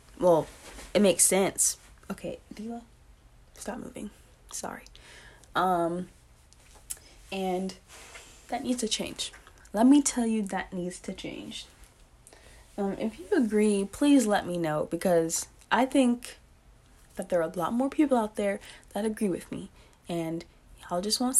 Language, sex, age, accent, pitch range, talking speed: English, female, 20-39, American, 180-235 Hz, 145 wpm